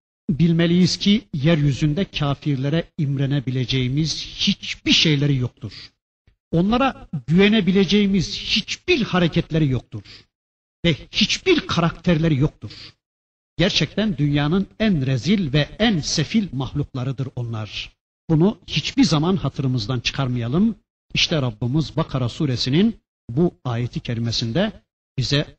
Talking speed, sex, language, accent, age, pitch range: 90 wpm, male, Turkish, native, 60-79, 130-200 Hz